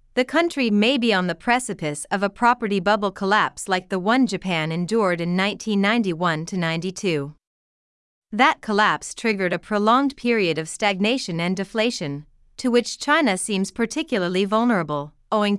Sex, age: female, 30-49